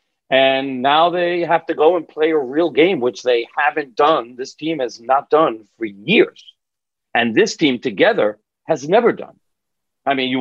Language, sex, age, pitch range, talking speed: English, male, 50-69, 130-165 Hz, 185 wpm